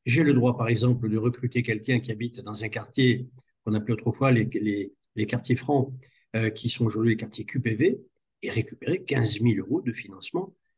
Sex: male